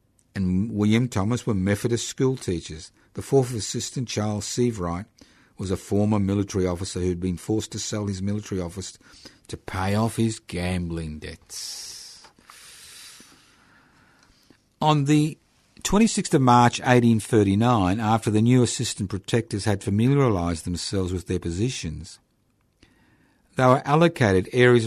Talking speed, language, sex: 130 wpm, English, male